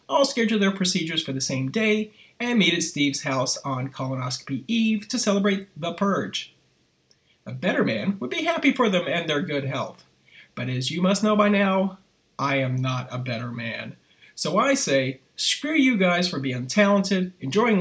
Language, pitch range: English, 135-205 Hz